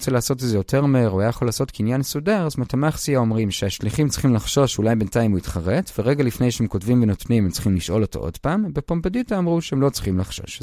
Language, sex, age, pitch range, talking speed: Hebrew, male, 30-49, 105-160 Hz, 225 wpm